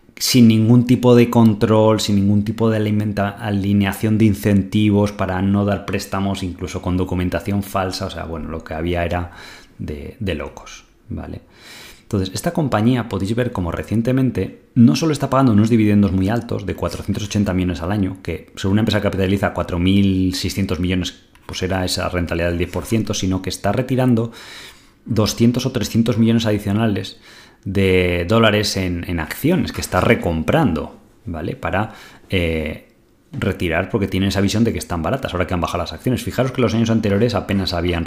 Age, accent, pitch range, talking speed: 20-39, Spanish, 90-115 Hz, 170 wpm